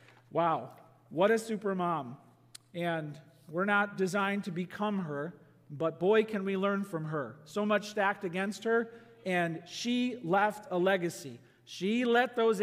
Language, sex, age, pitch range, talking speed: English, male, 40-59, 165-225 Hz, 150 wpm